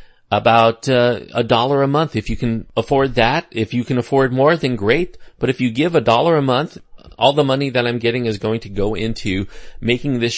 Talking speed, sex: 225 wpm, male